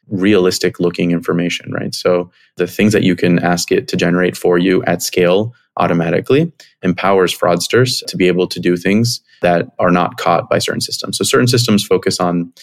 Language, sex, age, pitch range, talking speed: English, male, 20-39, 90-100 Hz, 185 wpm